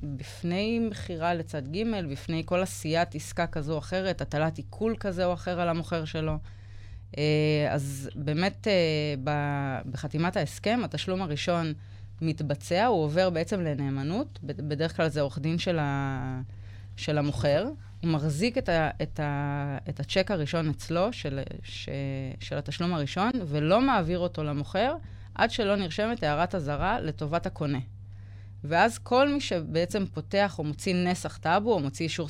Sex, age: female, 20-39